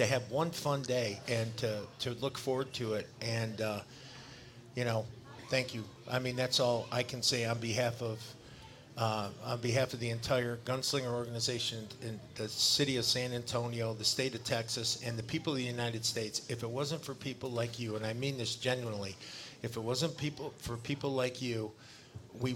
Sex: male